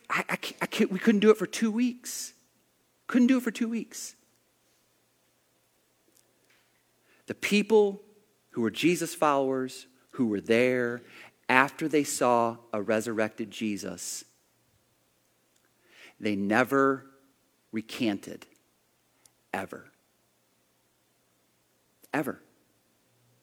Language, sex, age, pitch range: English, male, 40-59, 110-155 Hz